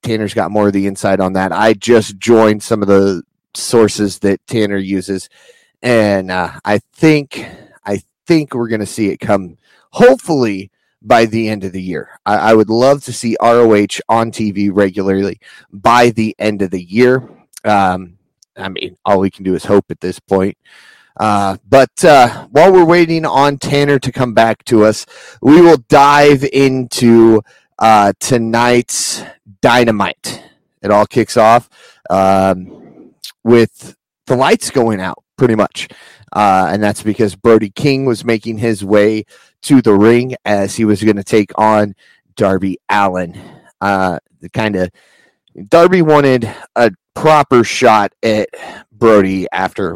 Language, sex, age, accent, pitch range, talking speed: English, male, 30-49, American, 100-125 Hz, 155 wpm